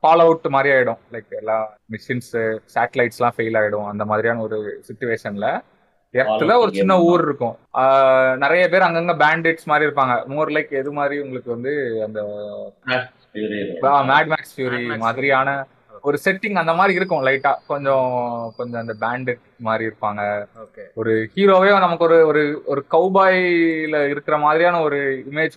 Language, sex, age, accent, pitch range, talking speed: Tamil, male, 20-39, native, 120-160 Hz, 60 wpm